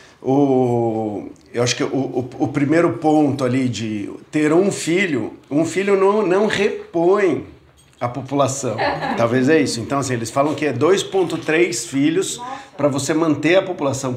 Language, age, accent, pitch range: Portuguese, 50-69, Brazilian, 130-175 Hz